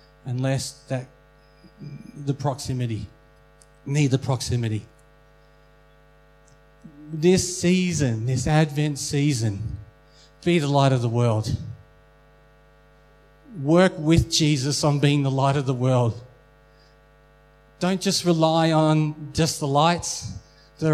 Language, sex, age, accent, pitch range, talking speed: English, male, 40-59, Australian, 140-175 Hz, 105 wpm